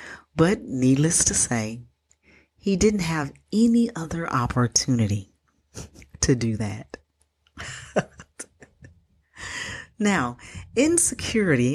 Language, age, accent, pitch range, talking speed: English, 40-59, American, 115-185 Hz, 75 wpm